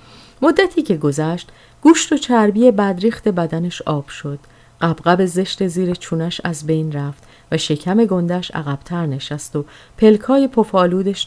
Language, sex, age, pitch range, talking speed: Persian, female, 30-49, 145-220 Hz, 135 wpm